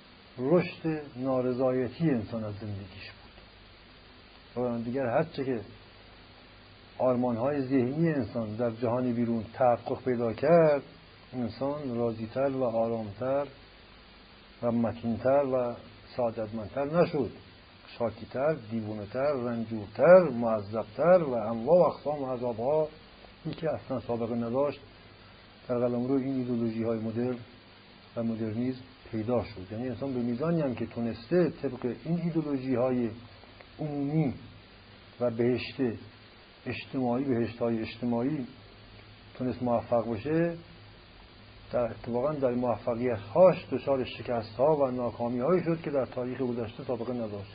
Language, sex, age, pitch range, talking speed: Persian, male, 60-79, 110-140 Hz, 110 wpm